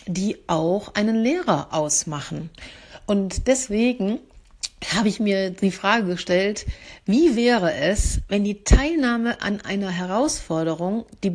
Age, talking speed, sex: 60-79, 120 wpm, female